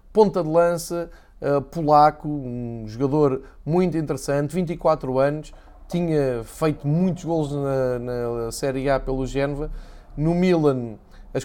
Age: 20-39